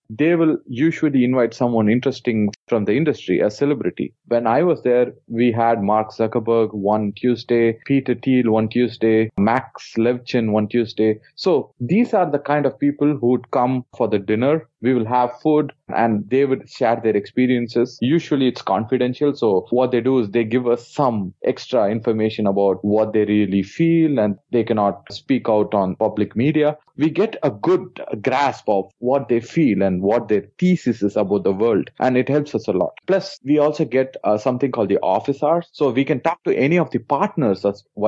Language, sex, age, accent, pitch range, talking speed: English, male, 30-49, Indian, 110-140 Hz, 190 wpm